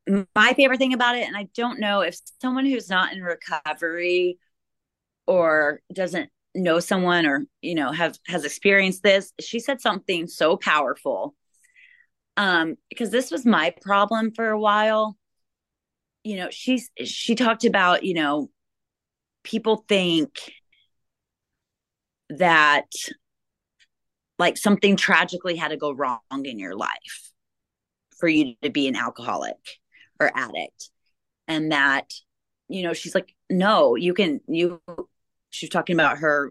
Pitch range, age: 160-230 Hz, 30-49